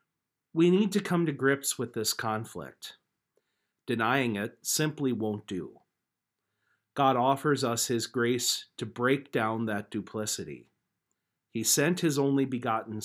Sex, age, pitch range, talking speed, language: male, 50-69, 110-145 Hz, 135 wpm, English